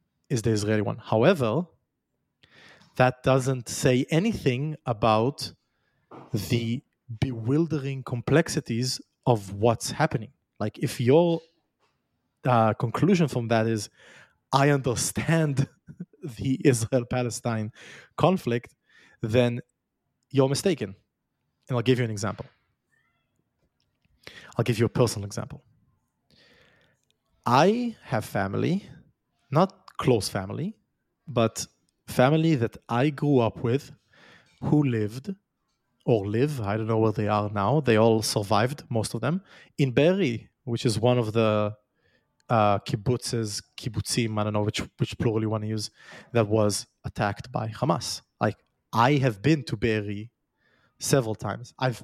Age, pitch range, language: 30-49, 110-140 Hz, English